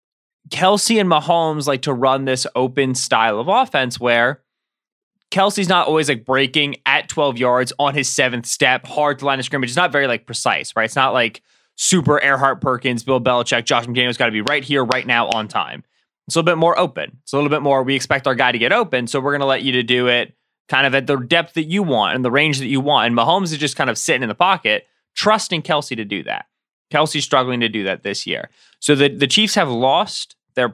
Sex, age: male, 20-39